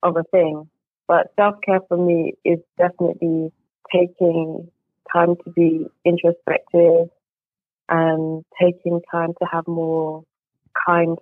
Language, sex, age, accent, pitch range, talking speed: English, female, 20-39, British, 160-180 Hz, 120 wpm